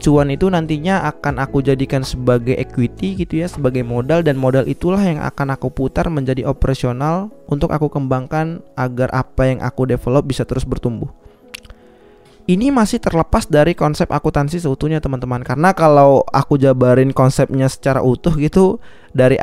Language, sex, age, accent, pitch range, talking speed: Indonesian, male, 20-39, native, 130-160 Hz, 150 wpm